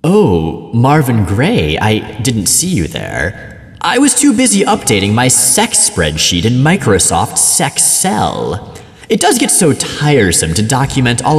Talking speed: 150 wpm